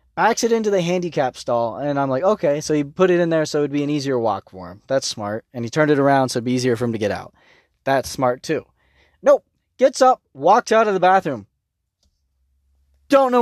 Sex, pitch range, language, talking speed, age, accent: male, 115-170 Hz, English, 245 wpm, 20-39, American